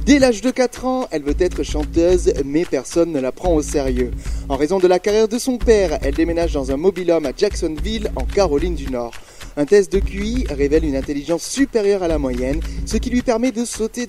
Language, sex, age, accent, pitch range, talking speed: French, male, 30-49, French, 150-235 Hz, 225 wpm